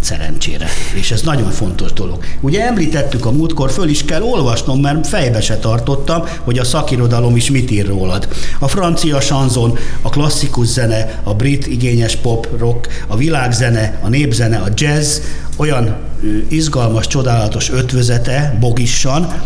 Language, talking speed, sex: Hungarian, 145 wpm, male